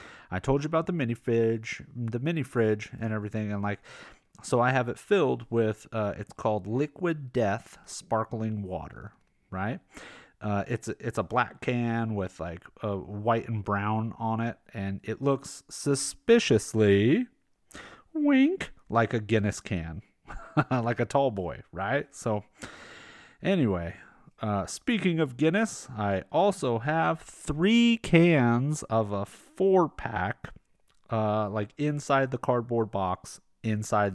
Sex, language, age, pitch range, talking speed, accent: male, English, 30-49, 105-145 Hz, 135 wpm, American